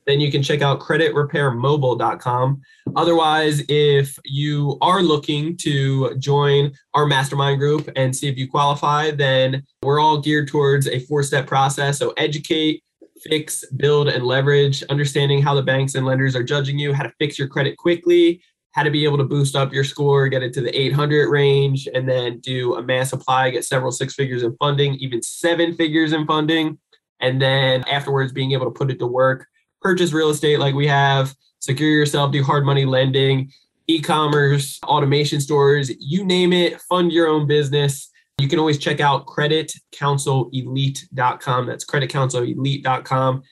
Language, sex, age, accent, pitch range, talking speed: English, male, 20-39, American, 135-155 Hz, 170 wpm